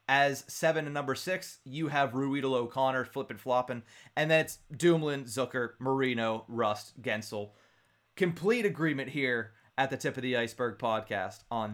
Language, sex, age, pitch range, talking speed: English, male, 30-49, 120-160 Hz, 150 wpm